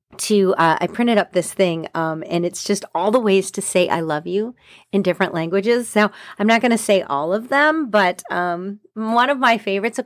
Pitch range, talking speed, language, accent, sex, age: 180-245 Hz, 225 wpm, English, American, female, 40-59